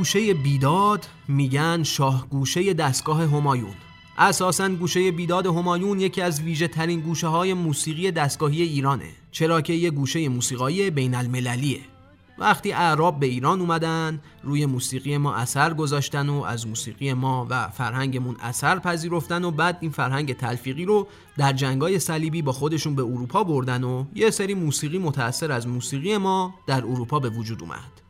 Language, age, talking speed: Persian, 30-49, 155 wpm